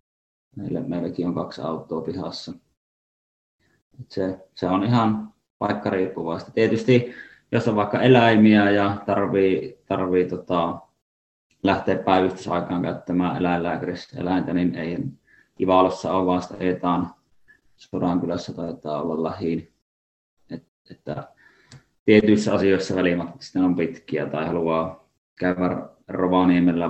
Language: Finnish